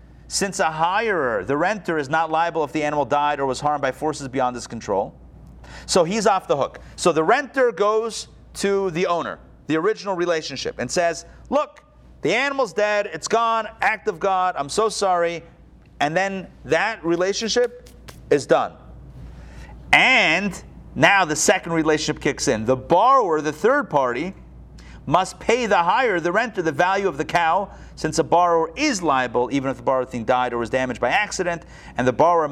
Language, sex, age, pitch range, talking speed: English, male, 40-59, 130-185 Hz, 180 wpm